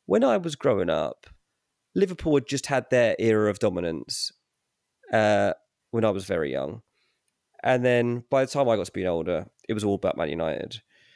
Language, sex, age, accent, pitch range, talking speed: English, male, 20-39, British, 120-195 Hz, 185 wpm